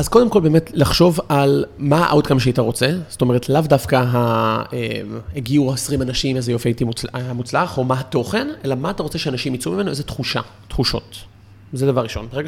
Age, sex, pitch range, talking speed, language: 30-49, male, 115-150 Hz, 185 wpm, Hebrew